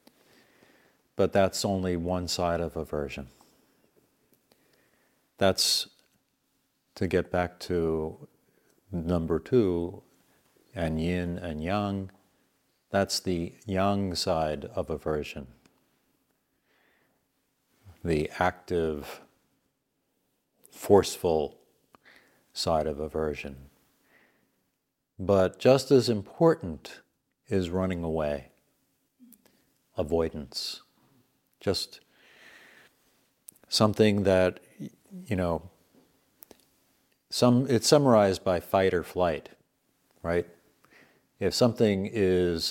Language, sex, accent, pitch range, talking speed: English, male, American, 80-105 Hz, 75 wpm